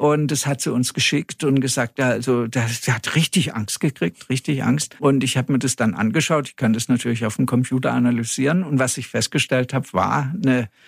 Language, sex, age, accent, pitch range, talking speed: German, male, 60-79, German, 135-170 Hz, 215 wpm